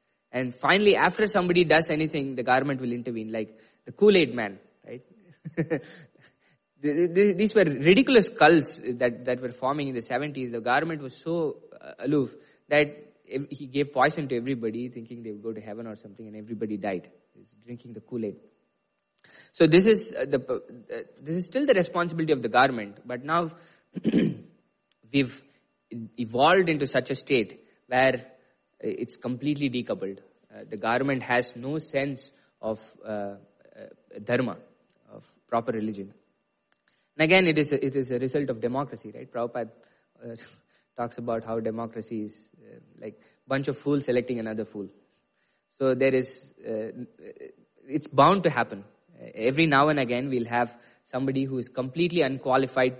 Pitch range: 120-155 Hz